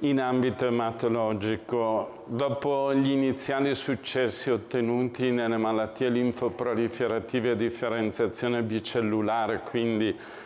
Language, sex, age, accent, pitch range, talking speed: Italian, male, 50-69, native, 115-130 Hz, 85 wpm